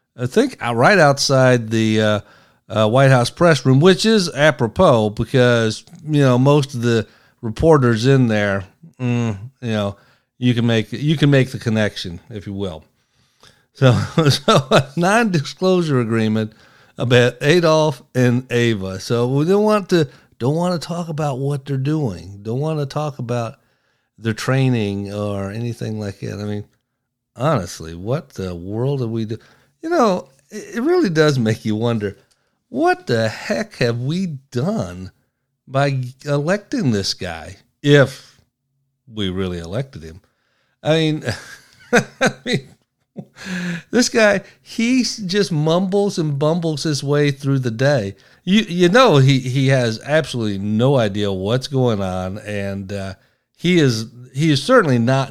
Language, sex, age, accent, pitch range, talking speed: English, male, 50-69, American, 110-150 Hz, 150 wpm